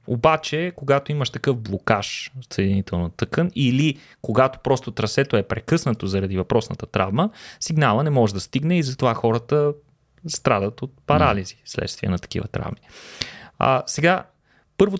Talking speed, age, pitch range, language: 140 wpm, 30-49, 115-170 Hz, Bulgarian